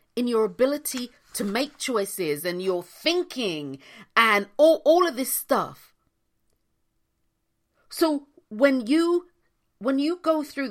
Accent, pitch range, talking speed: British, 190-285 Hz, 125 wpm